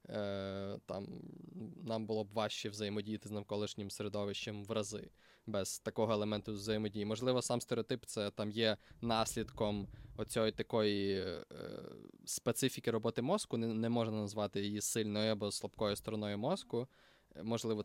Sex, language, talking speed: male, Ukrainian, 130 wpm